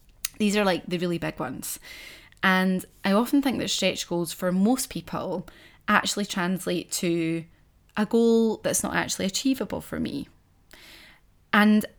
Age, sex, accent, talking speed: 20-39, female, British, 145 wpm